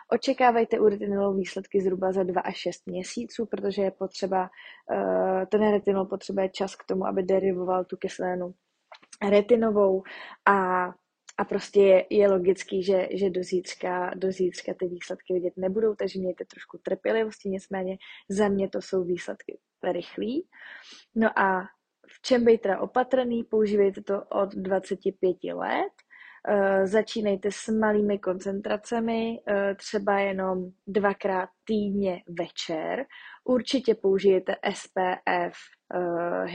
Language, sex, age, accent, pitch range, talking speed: Czech, female, 20-39, native, 185-215 Hz, 125 wpm